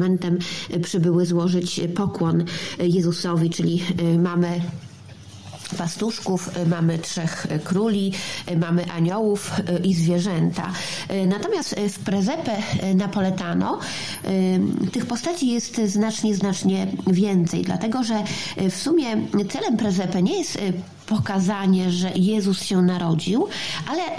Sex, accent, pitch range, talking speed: female, native, 180-200 Hz, 95 wpm